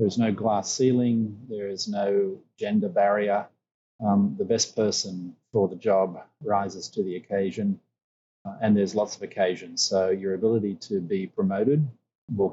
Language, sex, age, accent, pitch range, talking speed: English, male, 30-49, Australian, 90-115 Hz, 160 wpm